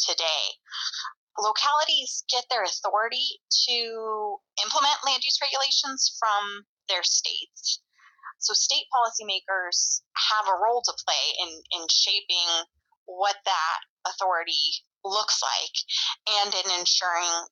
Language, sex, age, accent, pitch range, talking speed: English, female, 20-39, American, 170-215 Hz, 110 wpm